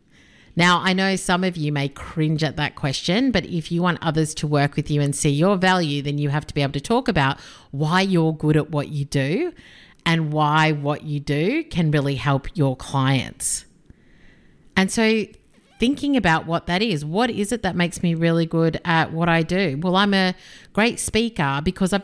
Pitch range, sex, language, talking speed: 150-195 Hz, female, English, 205 wpm